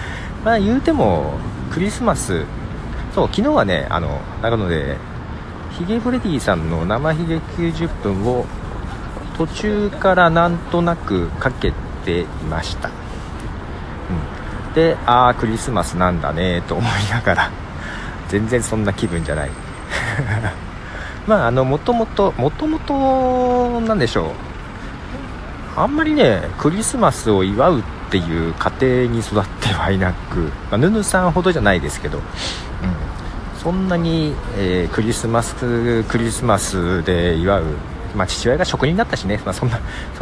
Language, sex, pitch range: Japanese, male, 90-135 Hz